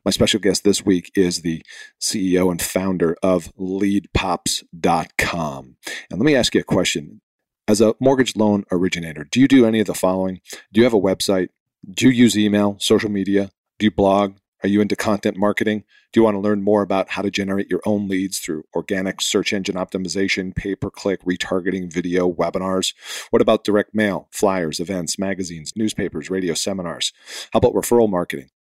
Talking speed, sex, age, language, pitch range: 180 wpm, male, 40-59, English, 90-110 Hz